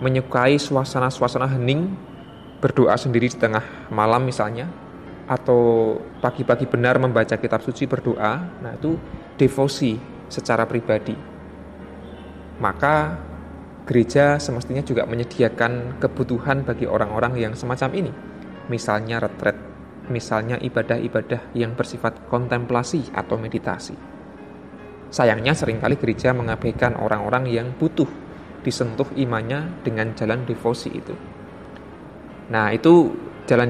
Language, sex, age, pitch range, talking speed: Indonesian, male, 20-39, 115-135 Hz, 100 wpm